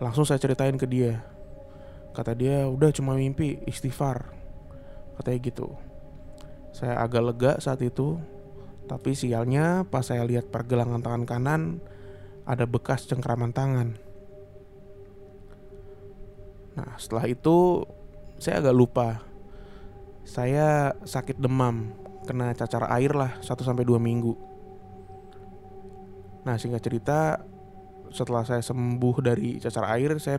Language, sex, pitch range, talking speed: Indonesian, male, 100-130 Hz, 110 wpm